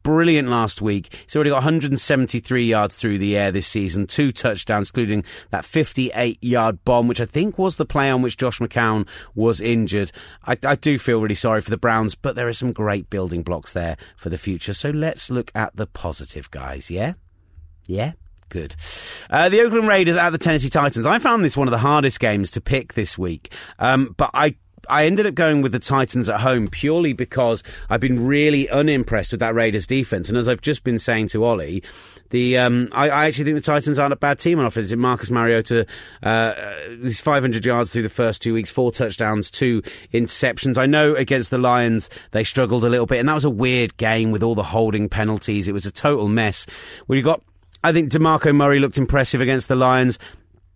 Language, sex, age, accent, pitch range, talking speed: English, male, 30-49, British, 105-140 Hz, 215 wpm